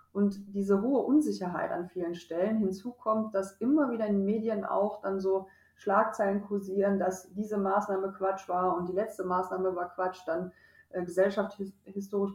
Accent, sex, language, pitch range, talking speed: German, female, German, 180-210 Hz, 165 wpm